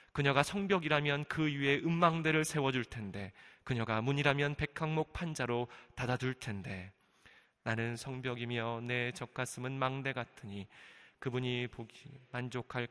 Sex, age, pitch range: male, 20-39, 120-145 Hz